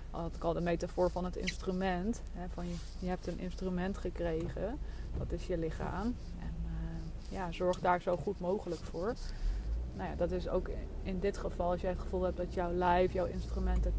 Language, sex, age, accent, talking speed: Dutch, female, 20-39, Dutch, 210 wpm